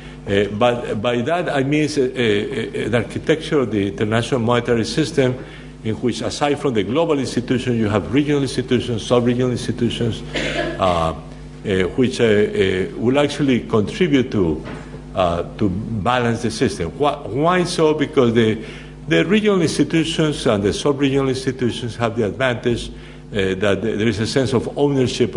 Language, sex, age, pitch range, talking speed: English, male, 60-79, 100-135 Hz, 155 wpm